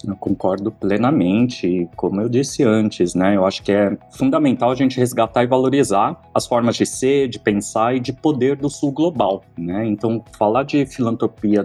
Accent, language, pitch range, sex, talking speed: Brazilian, Portuguese, 100-135 Hz, male, 185 wpm